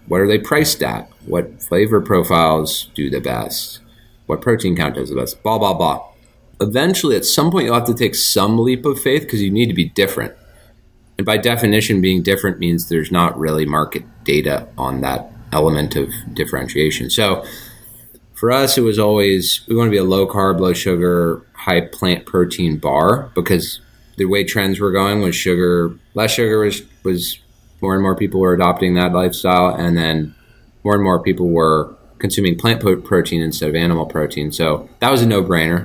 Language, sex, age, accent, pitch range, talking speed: English, male, 30-49, American, 85-105 Hz, 180 wpm